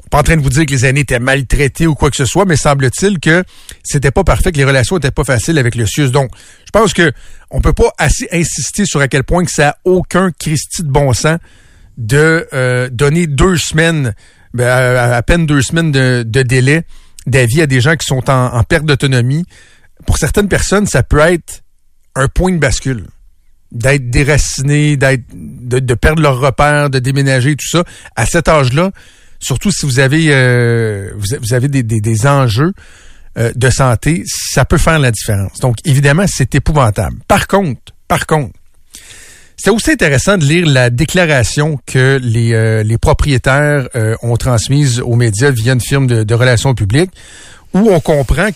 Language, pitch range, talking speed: French, 125-155 Hz, 190 wpm